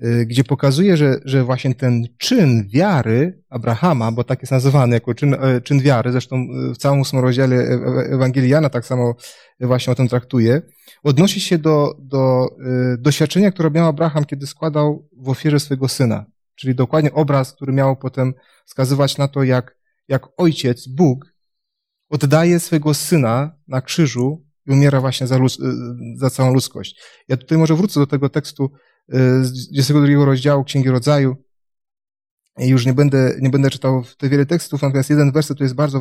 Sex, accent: male, native